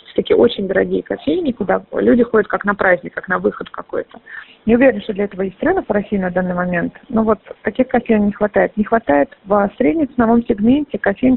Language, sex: Russian, female